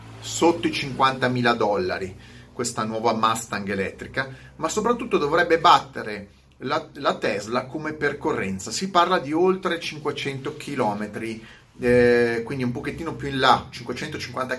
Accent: native